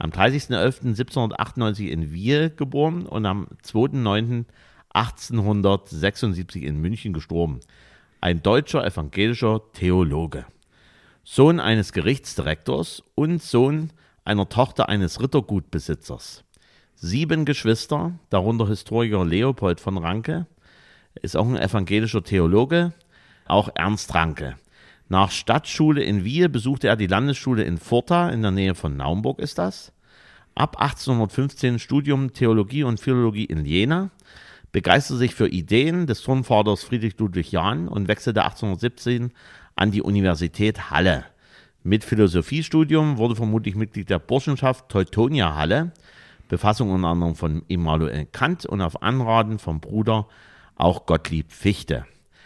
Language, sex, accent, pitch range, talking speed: German, male, German, 95-130 Hz, 120 wpm